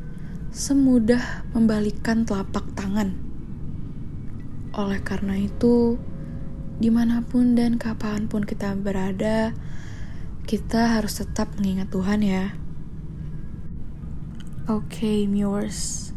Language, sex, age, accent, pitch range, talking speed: Indonesian, female, 10-29, native, 200-230 Hz, 75 wpm